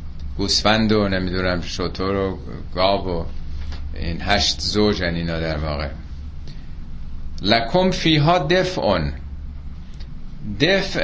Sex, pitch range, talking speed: male, 90-120 Hz, 100 wpm